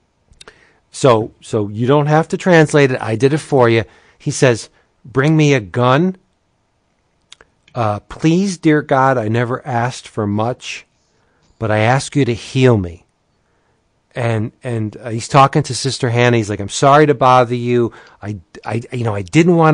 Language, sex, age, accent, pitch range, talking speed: English, male, 40-59, American, 115-145 Hz, 175 wpm